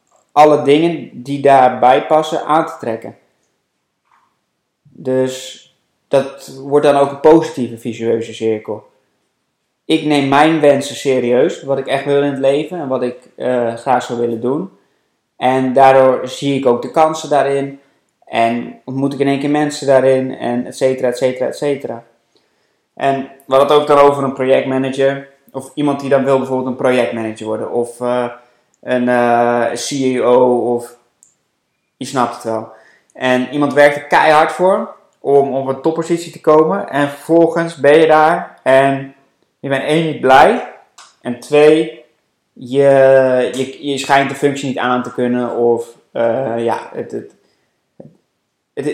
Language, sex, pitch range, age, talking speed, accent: Dutch, male, 125-145 Hz, 20-39, 155 wpm, Dutch